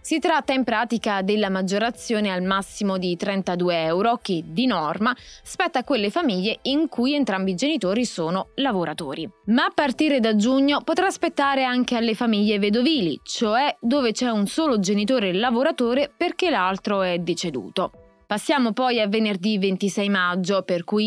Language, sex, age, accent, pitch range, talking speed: Italian, female, 20-39, native, 195-275 Hz, 155 wpm